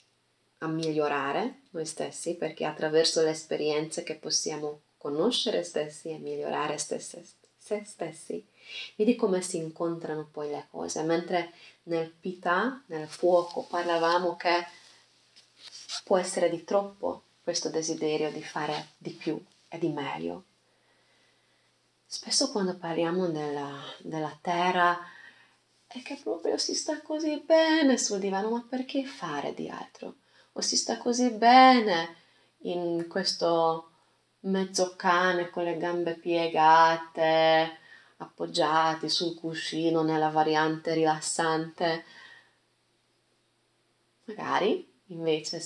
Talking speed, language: 110 wpm, Italian